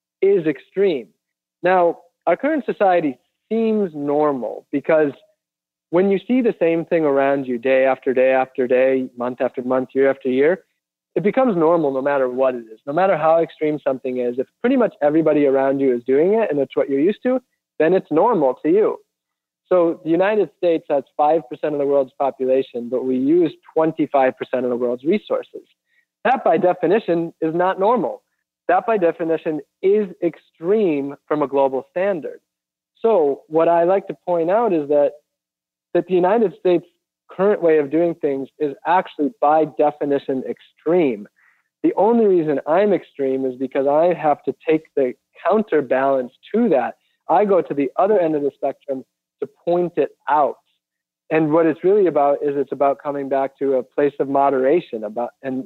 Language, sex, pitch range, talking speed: English, male, 135-180 Hz, 175 wpm